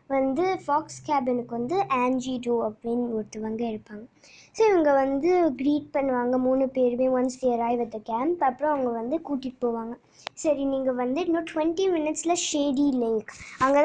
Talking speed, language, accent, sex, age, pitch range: 150 wpm, Tamil, native, male, 20-39, 245-310 Hz